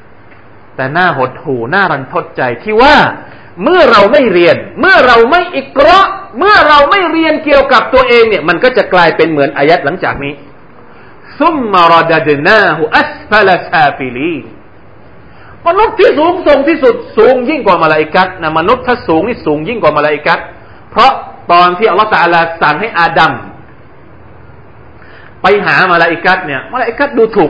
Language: Thai